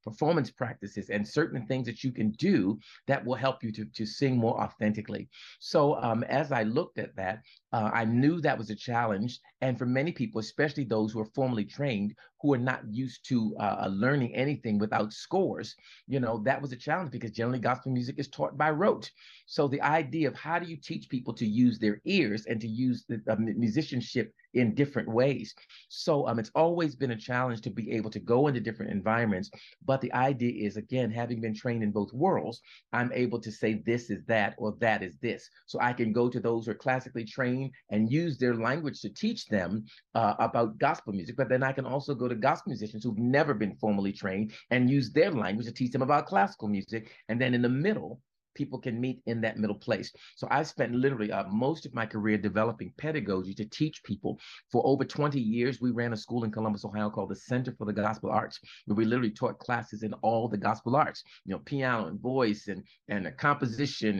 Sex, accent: male, American